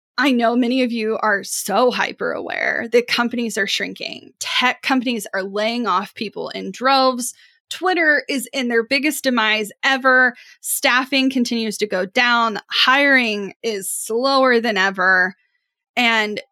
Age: 10-29